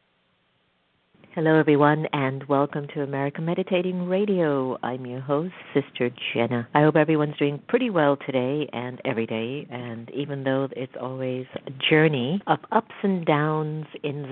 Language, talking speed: English, 145 wpm